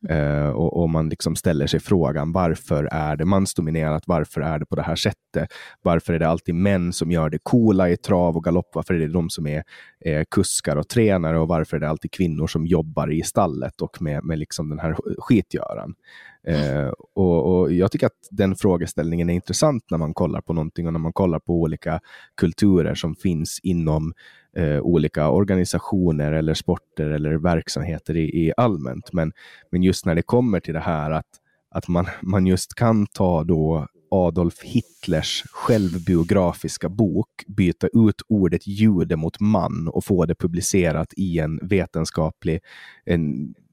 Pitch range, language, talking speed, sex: 80-95 Hz, Swedish, 175 wpm, male